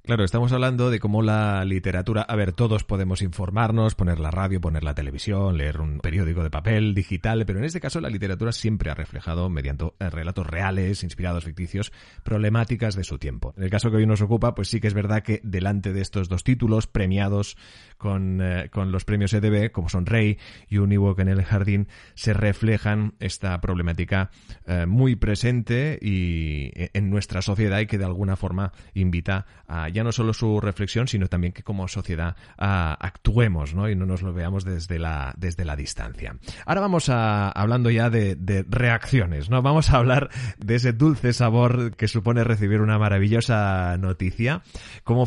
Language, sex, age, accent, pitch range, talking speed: Spanish, male, 30-49, Spanish, 95-115 Hz, 185 wpm